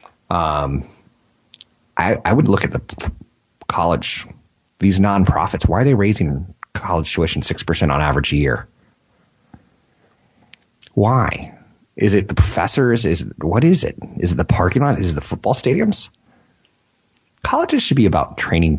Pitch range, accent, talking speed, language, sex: 75-100 Hz, American, 145 wpm, English, male